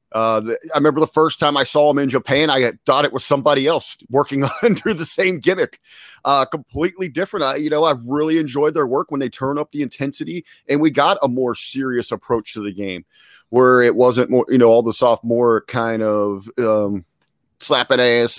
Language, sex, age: English, male, 40-59